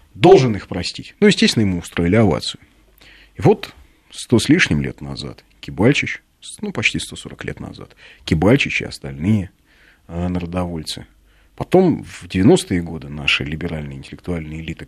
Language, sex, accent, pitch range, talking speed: Russian, male, native, 85-115 Hz, 135 wpm